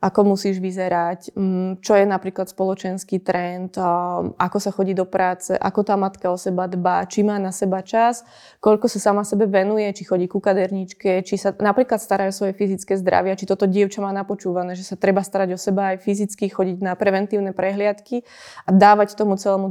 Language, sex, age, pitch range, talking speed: Slovak, female, 20-39, 190-210 Hz, 190 wpm